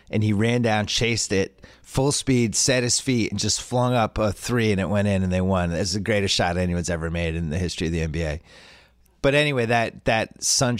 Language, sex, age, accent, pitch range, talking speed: English, male, 30-49, American, 85-125 Hz, 240 wpm